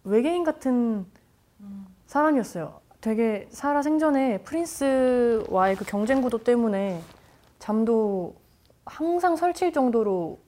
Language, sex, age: Korean, female, 20-39